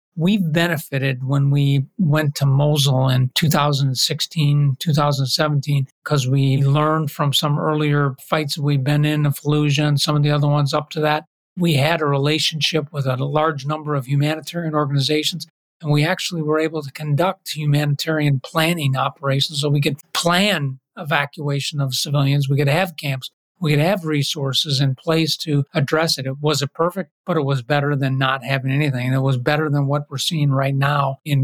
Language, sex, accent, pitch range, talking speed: English, male, American, 140-160 Hz, 180 wpm